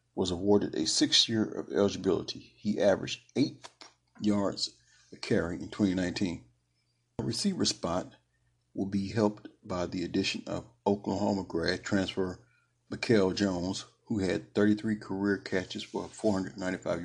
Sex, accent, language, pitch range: male, American, English, 90-110 Hz